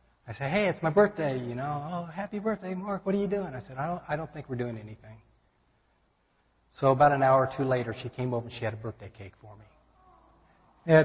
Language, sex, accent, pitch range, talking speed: English, male, American, 115-150 Hz, 245 wpm